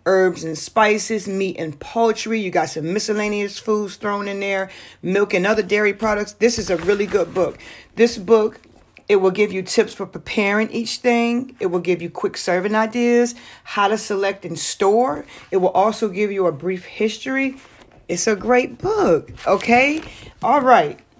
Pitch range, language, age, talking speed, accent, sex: 180-220 Hz, English, 40-59, 180 wpm, American, female